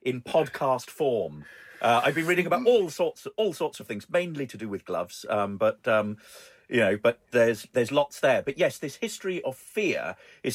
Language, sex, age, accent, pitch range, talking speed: English, male, 40-59, British, 100-135 Hz, 210 wpm